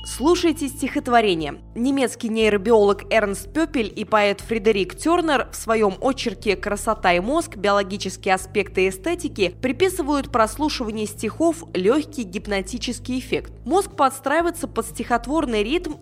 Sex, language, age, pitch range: female, Russian, 20-39, 200-290 Hz